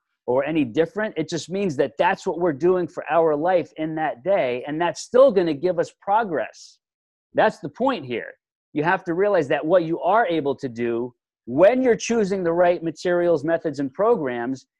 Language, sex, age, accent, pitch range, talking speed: English, male, 40-59, American, 155-230 Hz, 200 wpm